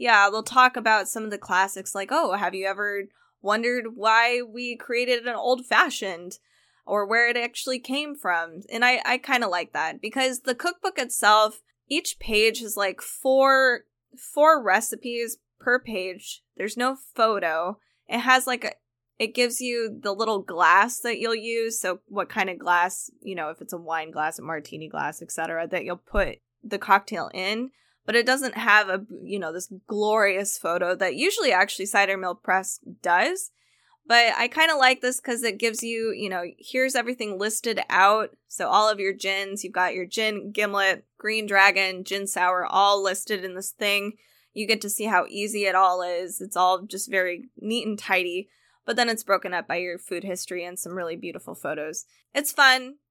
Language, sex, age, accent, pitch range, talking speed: English, female, 10-29, American, 190-240 Hz, 190 wpm